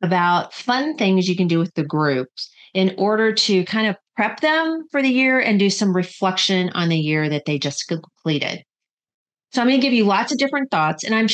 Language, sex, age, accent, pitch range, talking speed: English, female, 40-59, American, 175-230 Hz, 215 wpm